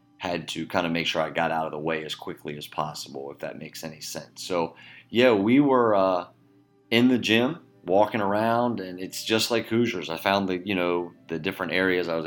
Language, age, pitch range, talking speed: English, 30-49, 80-100 Hz, 225 wpm